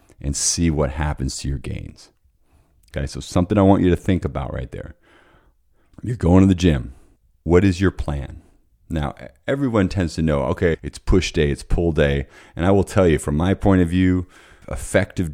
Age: 30-49